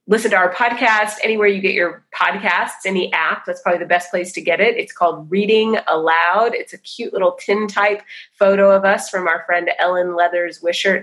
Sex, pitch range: female, 175-200 Hz